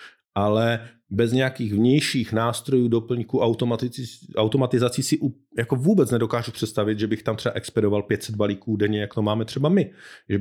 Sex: male